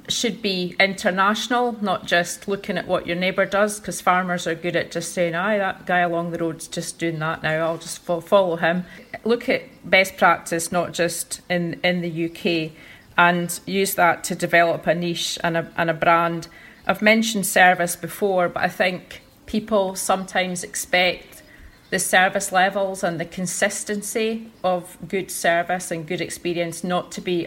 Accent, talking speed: British, 175 wpm